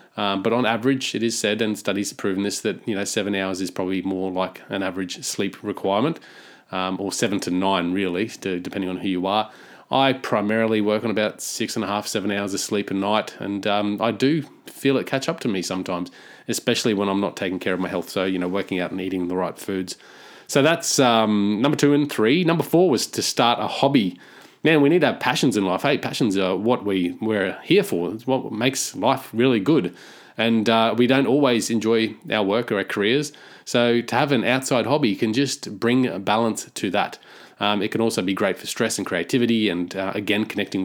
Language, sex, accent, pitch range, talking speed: English, male, Australian, 95-120 Hz, 230 wpm